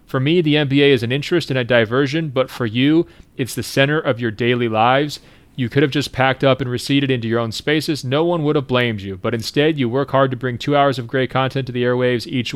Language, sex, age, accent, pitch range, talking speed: English, male, 40-59, American, 120-140 Hz, 260 wpm